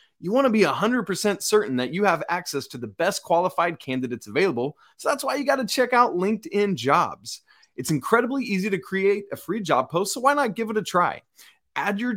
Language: English